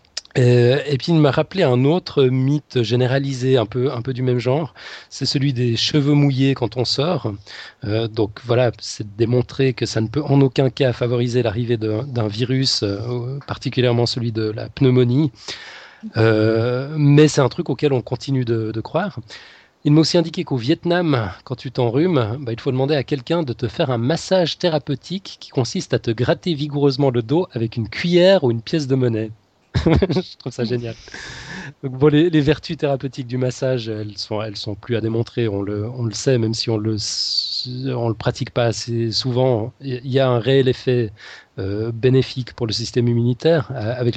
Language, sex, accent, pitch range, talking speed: French, male, French, 115-140 Hz, 195 wpm